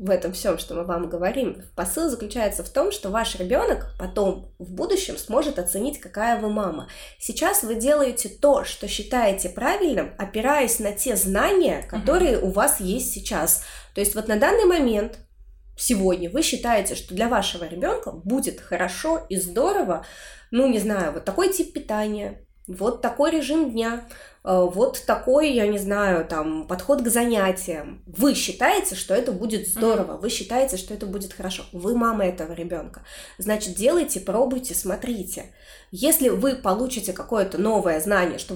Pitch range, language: 190-270 Hz, Russian